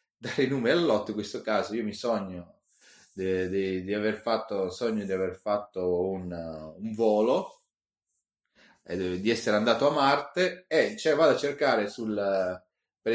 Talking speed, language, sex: 175 wpm, Italian, male